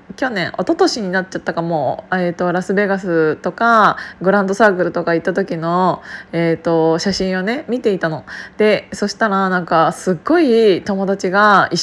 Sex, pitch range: female, 185-250 Hz